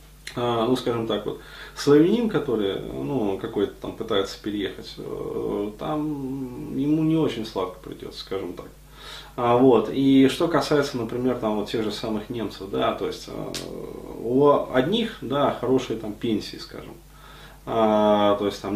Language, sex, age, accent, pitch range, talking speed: Russian, male, 20-39, native, 110-145 Hz, 145 wpm